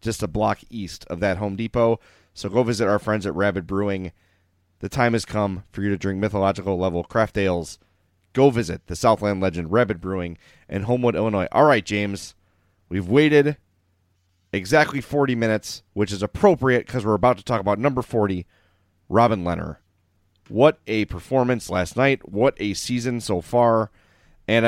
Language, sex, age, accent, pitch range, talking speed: English, male, 30-49, American, 90-125 Hz, 170 wpm